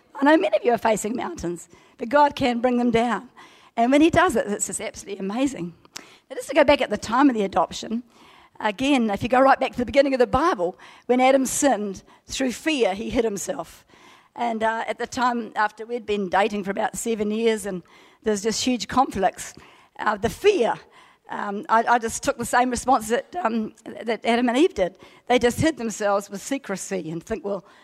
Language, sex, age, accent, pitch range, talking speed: English, female, 50-69, Australian, 200-255 Hz, 215 wpm